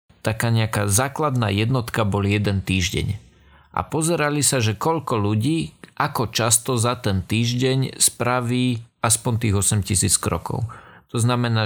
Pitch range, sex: 105-130 Hz, male